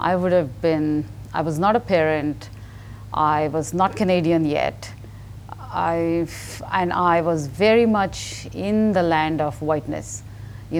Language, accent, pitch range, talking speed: English, Indian, 110-180 Hz, 145 wpm